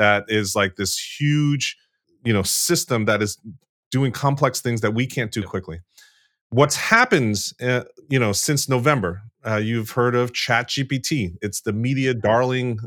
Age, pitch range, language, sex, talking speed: 30-49, 115-150 Hz, English, male, 165 wpm